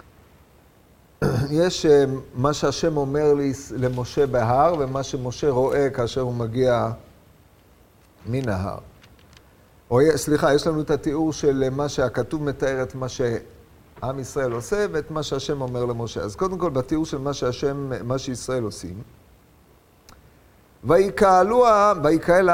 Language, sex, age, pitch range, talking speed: Hebrew, male, 50-69, 130-165 Hz, 130 wpm